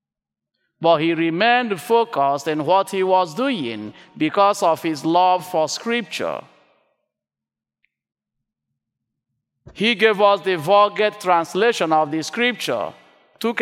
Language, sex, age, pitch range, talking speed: English, male, 50-69, 135-195 Hz, 110 wpm